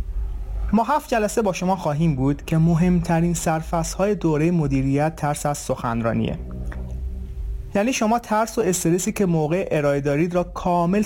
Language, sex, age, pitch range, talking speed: Persian, male, 30-49, 135-185 Hz, 145 wpm